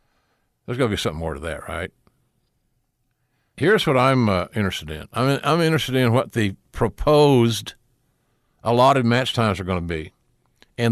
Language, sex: English, male